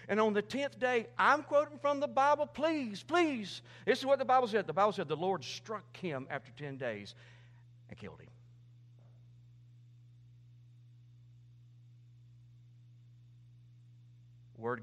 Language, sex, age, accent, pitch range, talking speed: English, male, 50-69, American, 120-130 Hz, 130 wpm